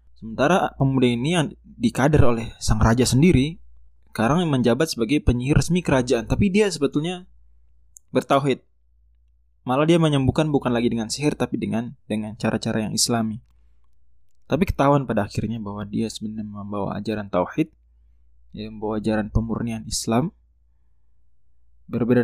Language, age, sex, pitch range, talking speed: Indonesian, 20-39, male, 90-130 Hz, 125 wpm